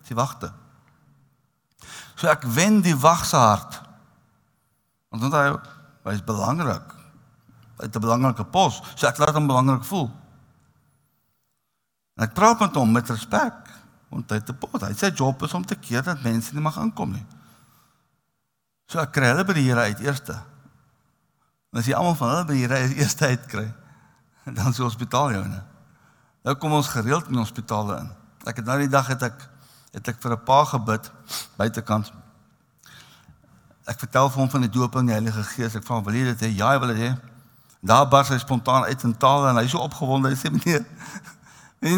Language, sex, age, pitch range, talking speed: English, male, 60-79, 115-145 Hz, 185 wpm